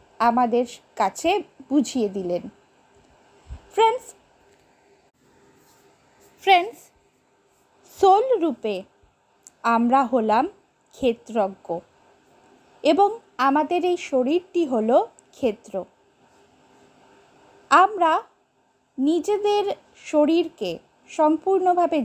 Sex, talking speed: female, 55 wpm